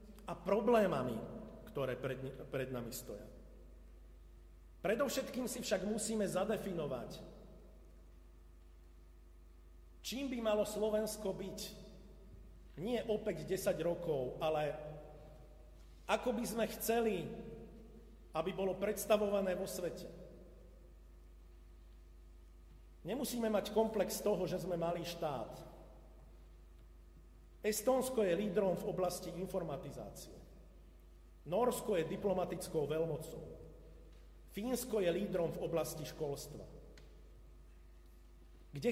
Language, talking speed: Slovak, 85 wpm